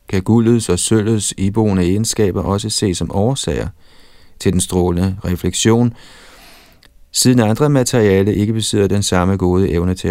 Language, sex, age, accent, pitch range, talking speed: Danish, male, 30-49, native, 90-115 Hz, 140 wpm